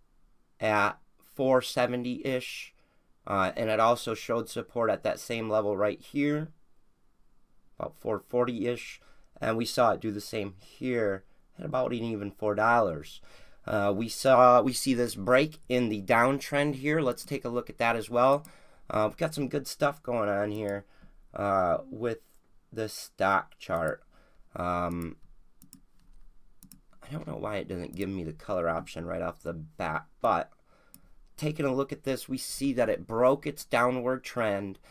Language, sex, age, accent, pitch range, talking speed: English, male, 30-49, American, 105-135 Hz, 160 wpm